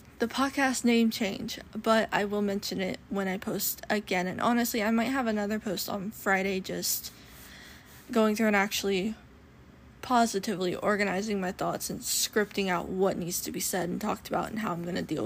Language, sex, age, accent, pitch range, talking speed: English, female, 10-29, American, 200-235 Hz, 190 wpm